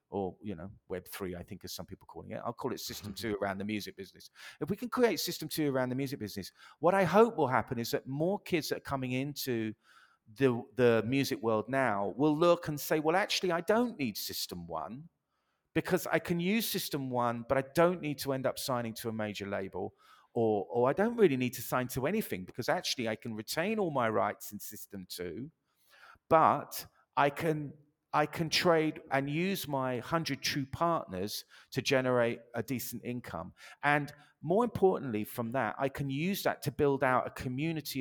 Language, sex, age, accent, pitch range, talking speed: English, male, 50-69, British, 115-155 Hz, 205 wpm